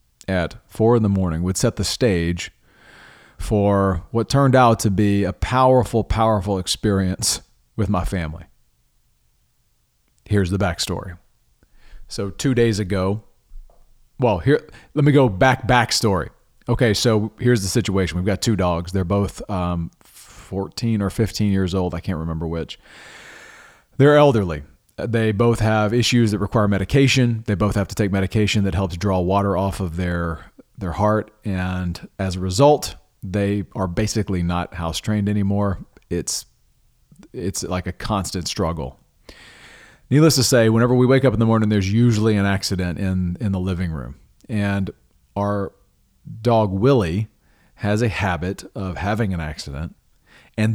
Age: 40-59